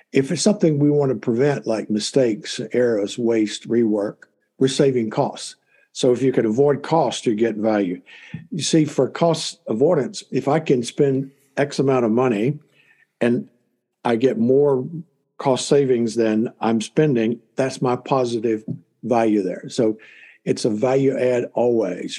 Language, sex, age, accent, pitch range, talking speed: English, male, 60-79, American, 110-145 Hz, 155 wpm